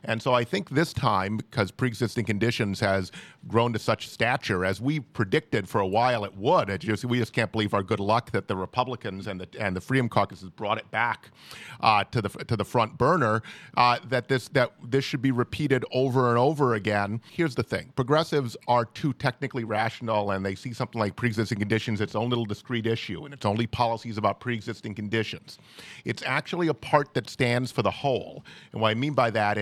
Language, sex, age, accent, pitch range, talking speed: English, male, 40-59, American, 110-135 Hz, 215 wpm